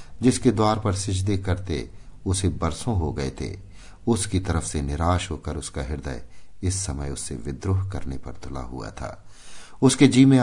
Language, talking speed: Hindi, 165 wpm